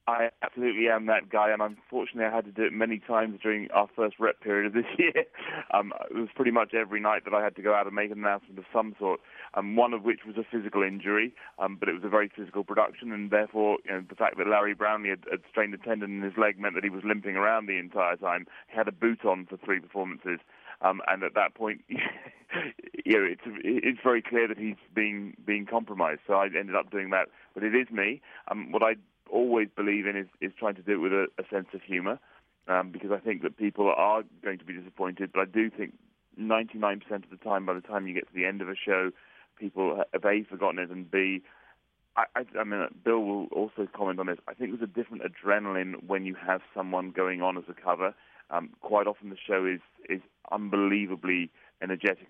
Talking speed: 235 wpm